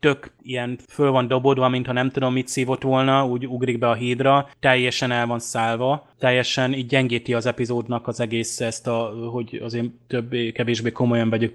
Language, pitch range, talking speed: Hungarian, 120-135 Hz, 185 wpm